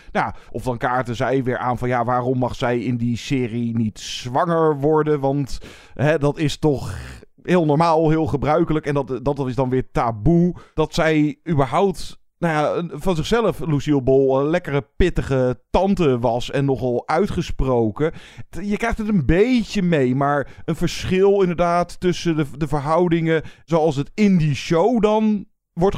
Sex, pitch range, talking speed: male, 125-165 Hz, 170 wpm